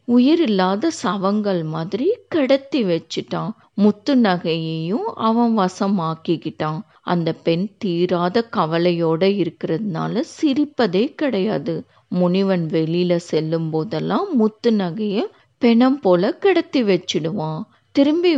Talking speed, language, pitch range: 60 wpm, Tamil, 170-255 Hz